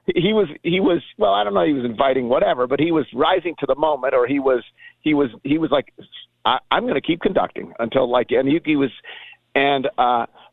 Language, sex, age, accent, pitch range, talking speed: English, male, 50-69, American, 120-185 Hz, 235 wpm